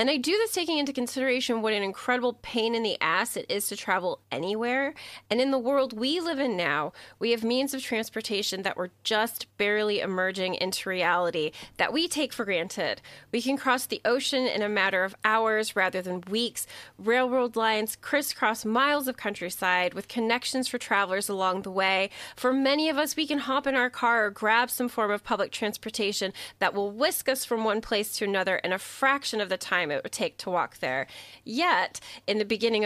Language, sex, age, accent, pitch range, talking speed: English, female, 30-49, American, 195-260 Hz, 205 wpm